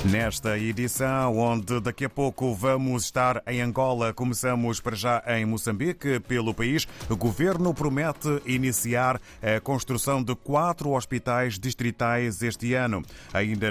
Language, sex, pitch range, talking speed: Portuguese, male, 105-130 Hz, 130 wpm